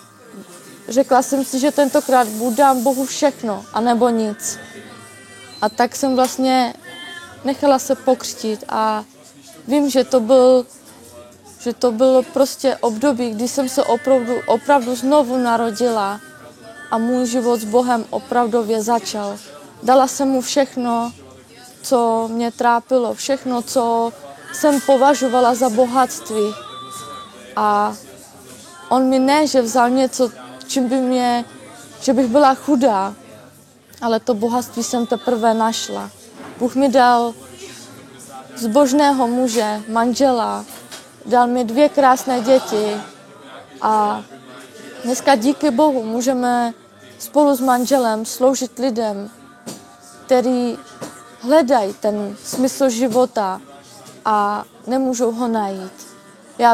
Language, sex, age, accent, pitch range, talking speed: Czech, female, 20-39, native, 230-265 Hz, 110 wpm